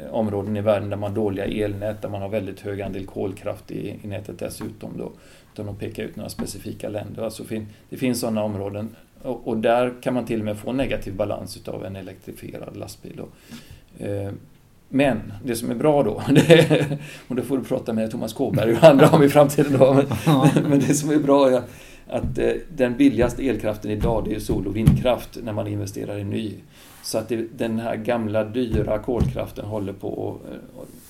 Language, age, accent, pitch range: Swedish, 40-59, native, 105-125 Hz